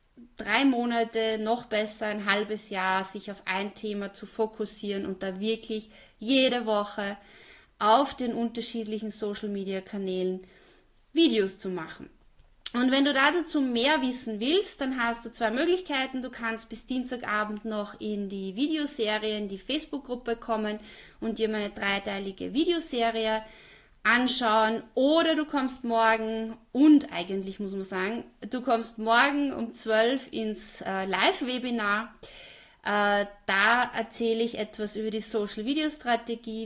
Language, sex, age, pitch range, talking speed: German, female, 30-49, 205-245 Hz, 140 wpm